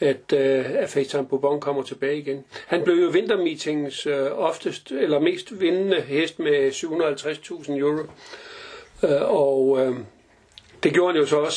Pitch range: 140-200 Hz